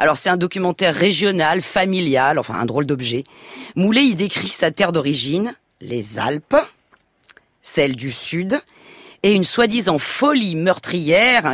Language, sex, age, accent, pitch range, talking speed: French, female, 40-59, French, 140-200 Hz, 135 wpm